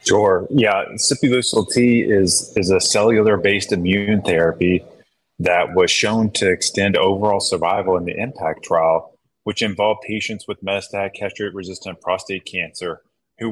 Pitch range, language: 95-105 Hz, English